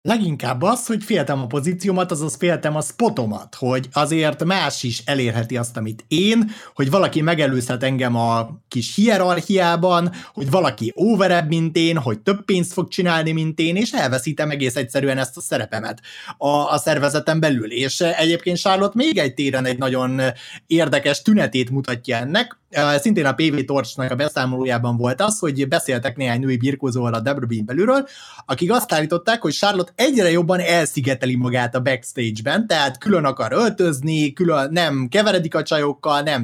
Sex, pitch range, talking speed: male, 130-175 Hz, 160 wpm